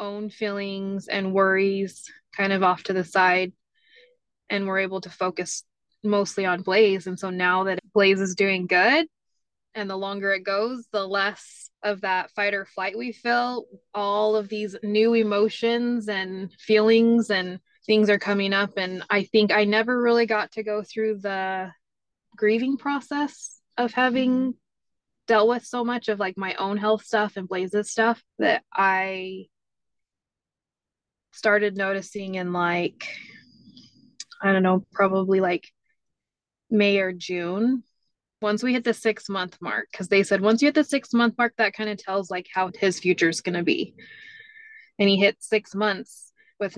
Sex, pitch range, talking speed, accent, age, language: female, 190-230 Hz, 165 wpm, American, 20-39, English